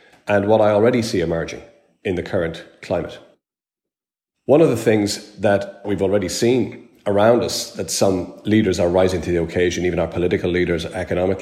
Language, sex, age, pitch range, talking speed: English, male, 40-59, 90-115 Hz, 175 wpm